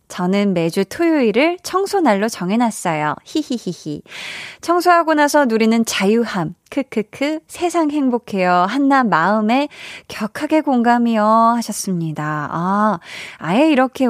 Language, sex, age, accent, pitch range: Korean, female, 20-39, native, 195-280 Hz